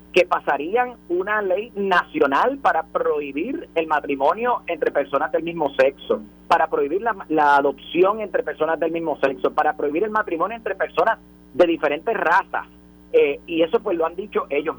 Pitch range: 130-220 Hz